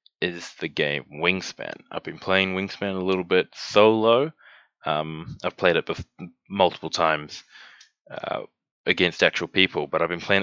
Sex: male